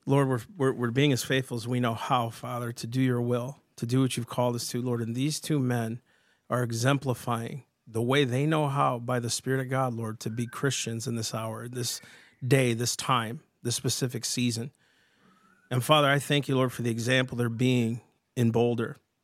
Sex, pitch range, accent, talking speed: male, 120-135 Hz, American, 205 wpm